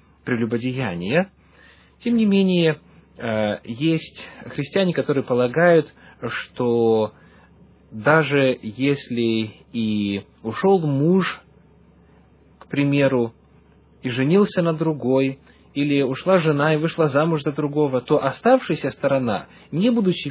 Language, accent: Russian, native